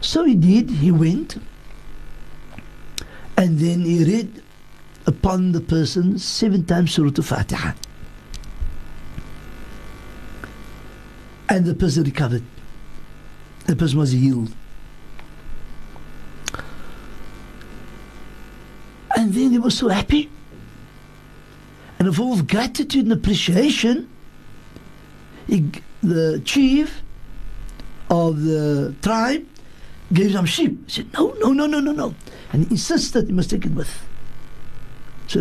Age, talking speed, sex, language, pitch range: 60-79, 105 wpm, male, English, 145-215 Hz